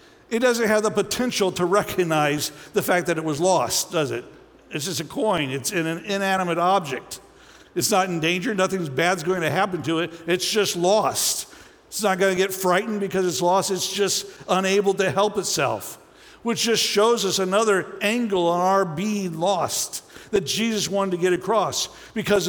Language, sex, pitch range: English, male, 180-220 Hz